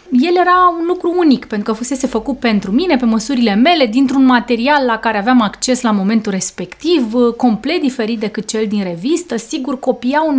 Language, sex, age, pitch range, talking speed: Romanian, female, 30-49, 210-265 Hz, 185 wpm